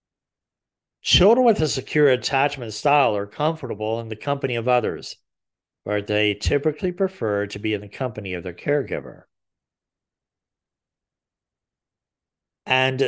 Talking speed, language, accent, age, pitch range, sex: 120 wpm, English, American, 50-69, 105-140 Hz, male